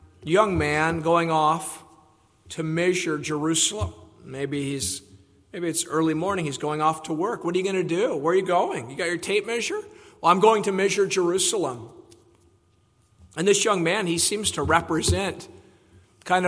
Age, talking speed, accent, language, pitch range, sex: 50-69, 175 wpm, American, English, 115-180 Hz, male